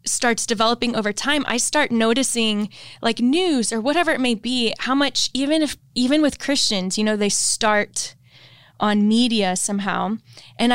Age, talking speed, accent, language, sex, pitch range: 10-29, 160 wpm, American, English, female, 205-245 Hz